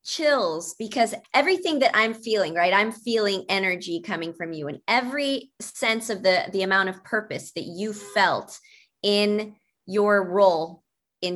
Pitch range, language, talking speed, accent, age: 180-250 Hz, English, 155 wpm, American, 30-49